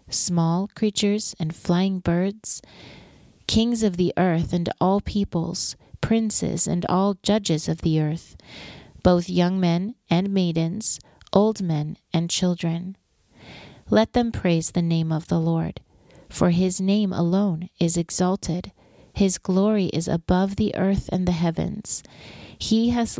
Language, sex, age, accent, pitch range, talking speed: English, female, 40-59, American, 165-195 Hz, 135 wpm